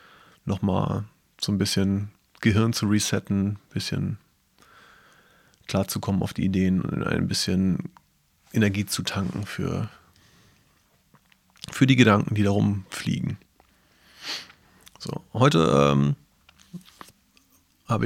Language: German